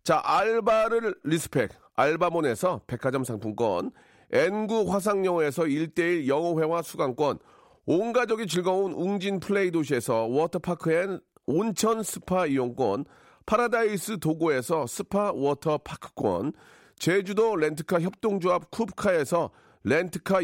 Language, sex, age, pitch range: Korean, male, 40-59, 160-210 Hz